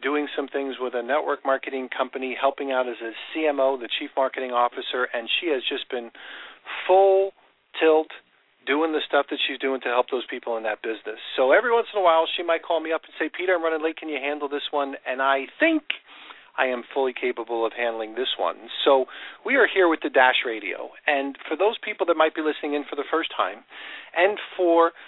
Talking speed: 225 wpm